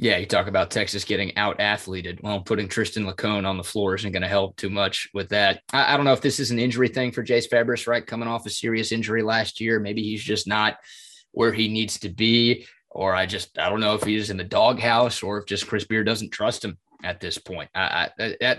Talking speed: 240 wpm